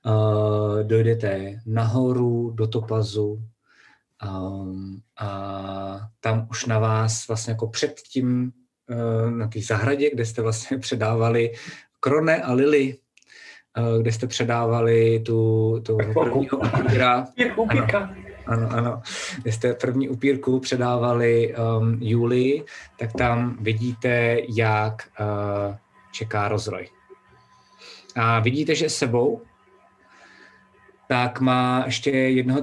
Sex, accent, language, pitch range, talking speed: male, native, Czech, 110-130 Hz, 110 wpm